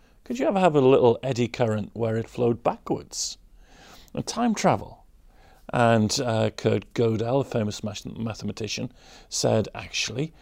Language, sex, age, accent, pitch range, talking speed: English, male, 40-59, British, 110-130 Hz, 140 wpm